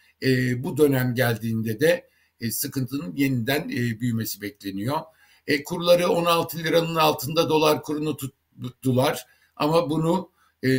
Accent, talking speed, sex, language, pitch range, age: native, 120 wpm, male, Turkish, 125-155 Hz, 60-79